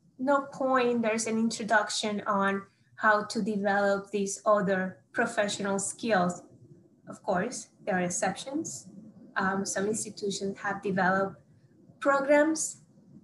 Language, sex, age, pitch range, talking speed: English, female, 20-39, 190-225 Hz, 110 wpm